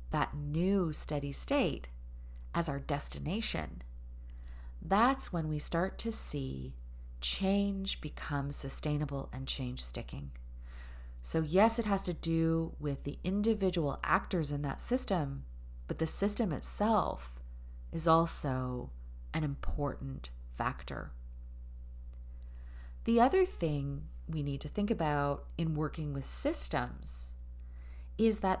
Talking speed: 115 wpm